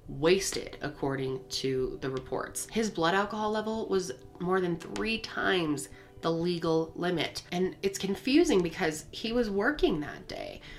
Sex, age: female, 20-39